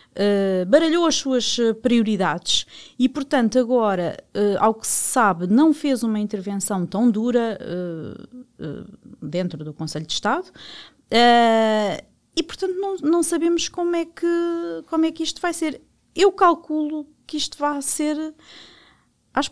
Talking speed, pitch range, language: 125 wpm, 185-245 Hz, Portuguese